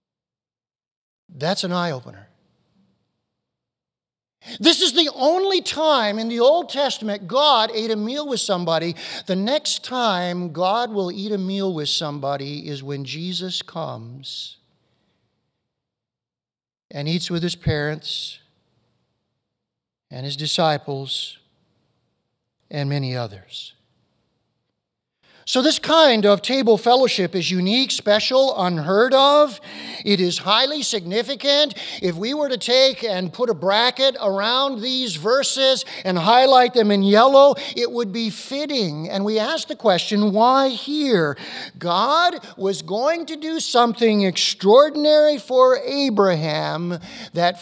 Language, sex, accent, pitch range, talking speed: English, male, American, 175-260 Hz, 120 wpm